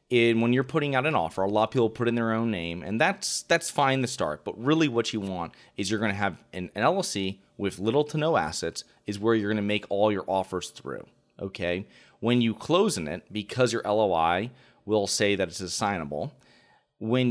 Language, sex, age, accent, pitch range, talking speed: English, male, 30-49, American, 95-120 Hz, 225 wpm